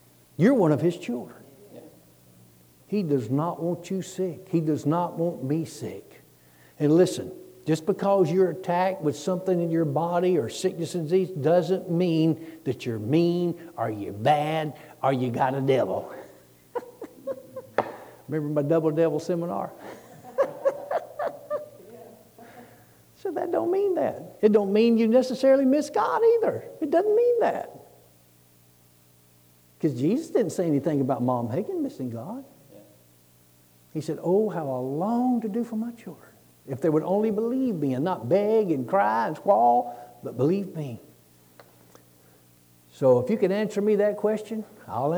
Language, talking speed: English, 150 wpm